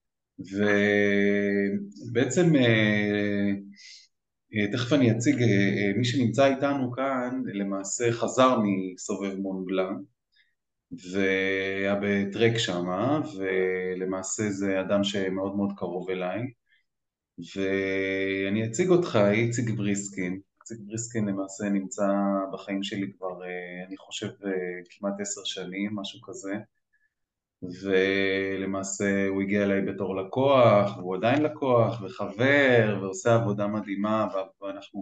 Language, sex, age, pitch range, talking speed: Hebrew, male, 20-39, 95-110 Hz, 95 wpm